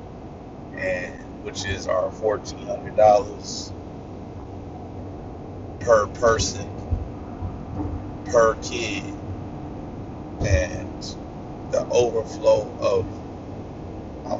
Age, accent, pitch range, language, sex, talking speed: 40-59, American, 100-110 Hz, English, male, 60 wpm